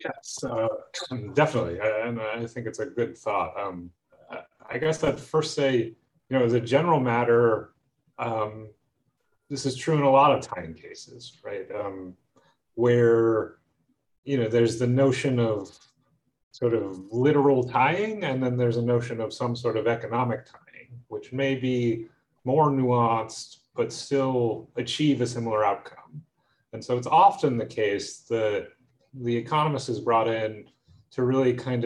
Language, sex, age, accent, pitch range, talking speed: English, male, 30-49, American, 115-145 Hz, 155 wpm